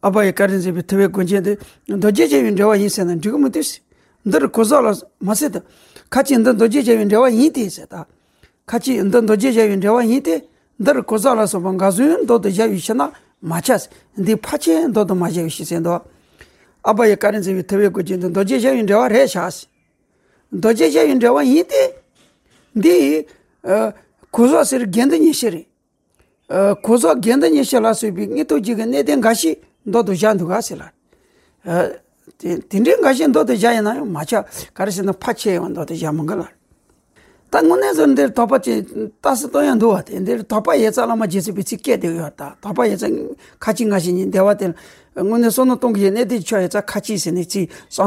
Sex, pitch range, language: male, 190-245 Hz, English